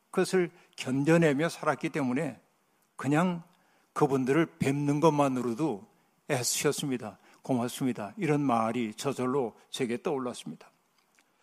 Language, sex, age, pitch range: Korean, male, 60-79, 140-175 Hz